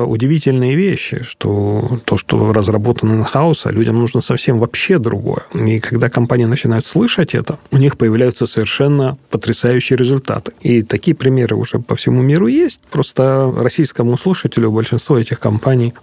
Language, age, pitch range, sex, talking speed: Russian, 30-49, 115-140 Hz, male, 140 wpm